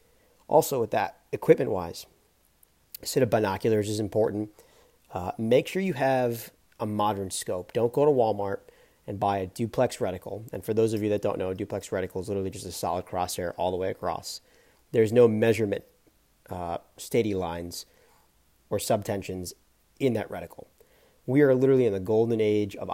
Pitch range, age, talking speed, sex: 100-125 Hz, 40-59, 175 wpm, male